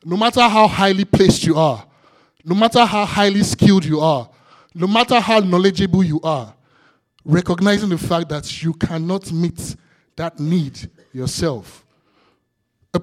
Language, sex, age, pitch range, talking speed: English, male, 20-39, 140-195 Hz, 145 wpm